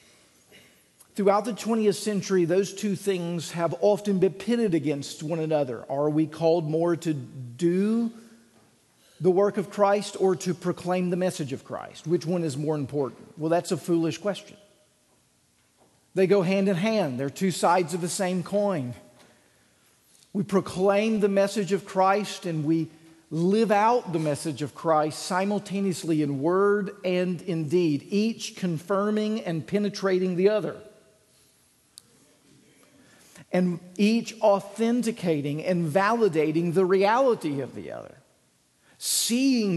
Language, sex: English, male